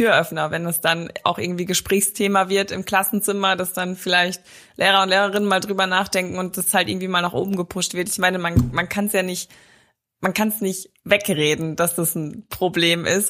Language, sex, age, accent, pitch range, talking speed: German, female, 20-39, German, 175-205 Hz, 210 wpm